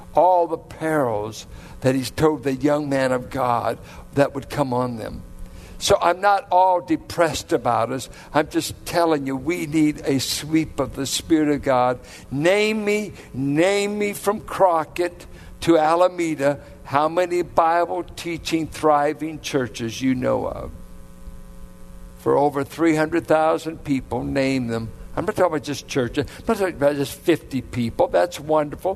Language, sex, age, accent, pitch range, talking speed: English, male, 60-79, American, 125-175 Hz, 150 wpm